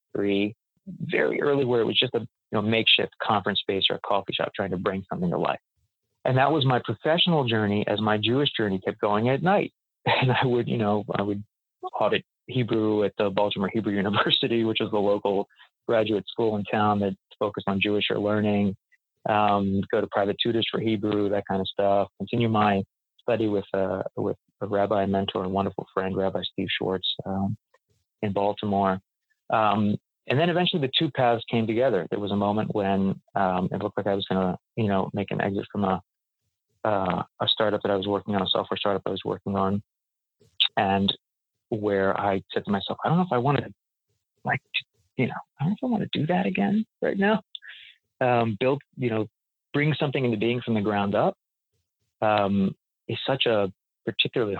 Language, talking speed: English, 195 wpm